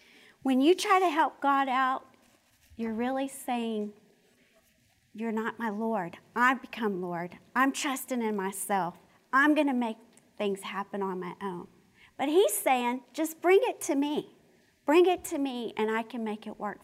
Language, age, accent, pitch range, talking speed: English, 50-69, American, 215-290 Hz, 170 wpm